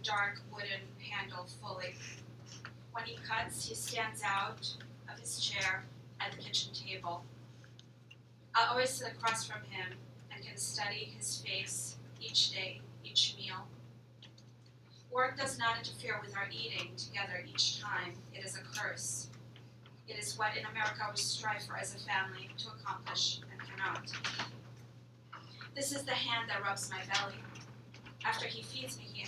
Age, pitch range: 30-49, 120-190 Hz